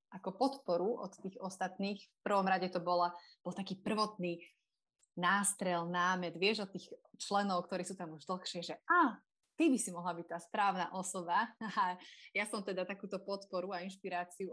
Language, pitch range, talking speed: Slovak, 175-205 Hz, 175 wpm